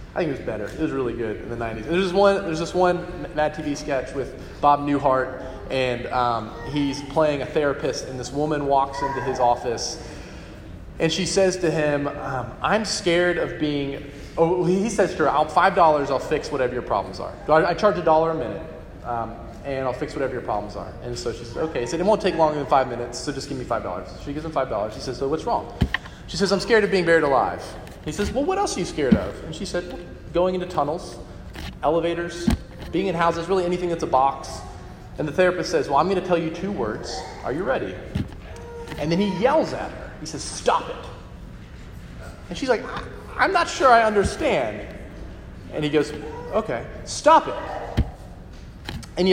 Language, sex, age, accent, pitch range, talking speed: English, male, 20-39, American, 135-195 Hz, 215 wpm